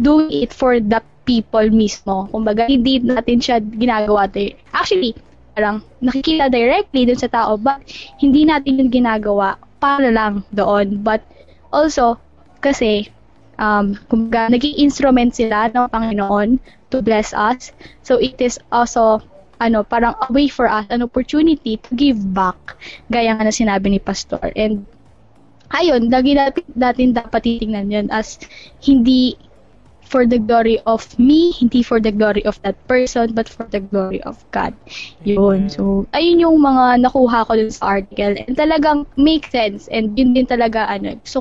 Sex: female